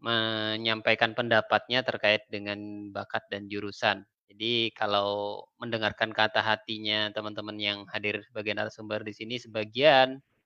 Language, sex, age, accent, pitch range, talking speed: Indonesian, male, 20-39, native, 105-120 Hz, 120 wpm